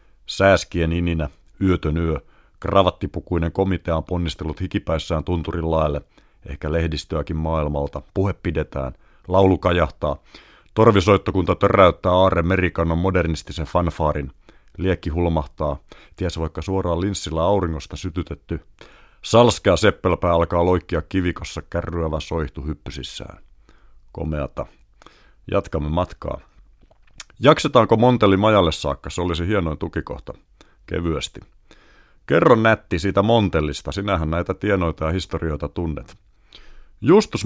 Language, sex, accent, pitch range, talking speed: Finnish, male, native, 80-95 Hz, 100 wpm